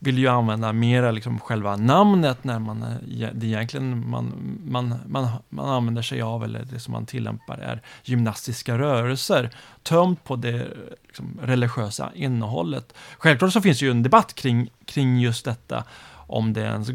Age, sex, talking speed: 30-49, male, 165 wpm